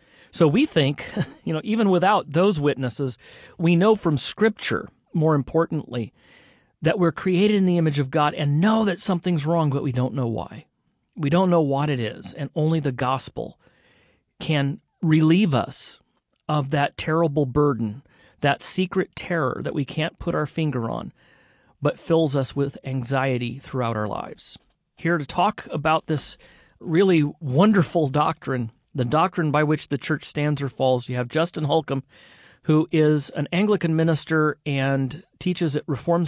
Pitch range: 135-165 Hz